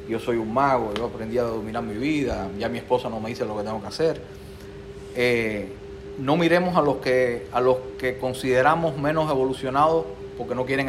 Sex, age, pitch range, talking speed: male, 40-59, 100-140 Hz, 200 wpm